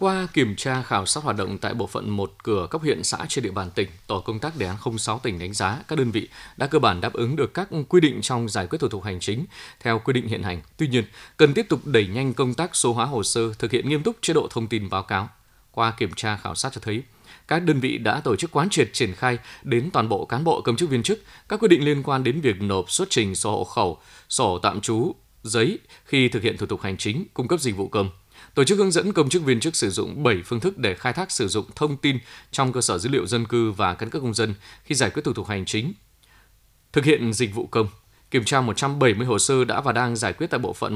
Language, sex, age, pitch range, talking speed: Vietnamese, male, 20-39, 105-140 Hz, 275 wpm